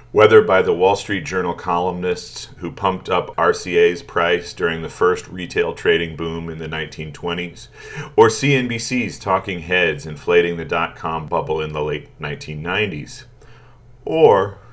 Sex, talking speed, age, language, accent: male, 140 wpm, 40-59, English, American